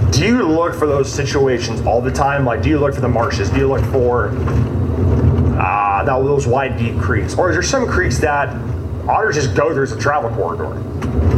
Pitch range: 115-140 Hz